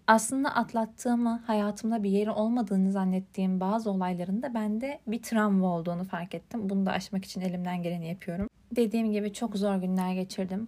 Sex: female